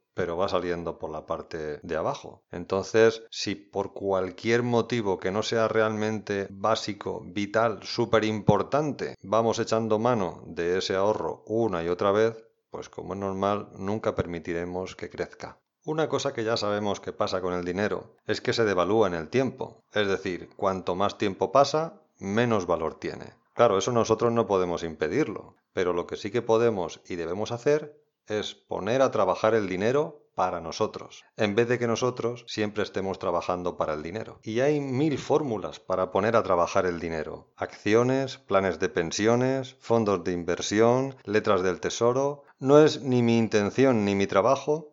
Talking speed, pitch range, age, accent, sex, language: 170 wpm, 95-120 Hz, 40-59, Spanish, male, Spanish